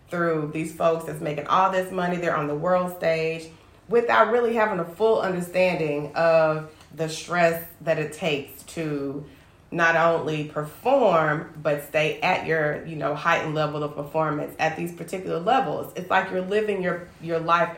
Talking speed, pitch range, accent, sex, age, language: 170 wpm, 150-175 Hz, American, female, 30-49, English